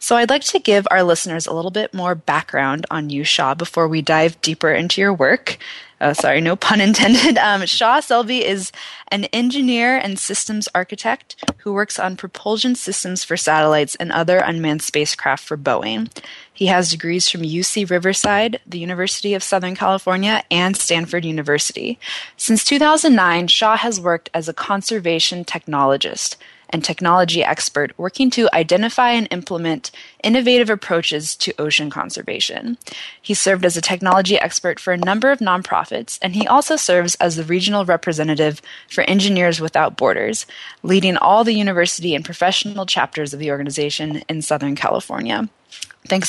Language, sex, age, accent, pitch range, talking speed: English, female, 20-39, American, 165-210 Hz, 155 wpm